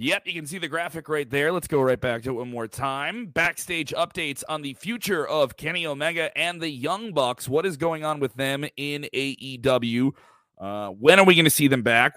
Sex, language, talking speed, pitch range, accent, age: male, English, 225 wpm, 125-155 Hz, American, 30-49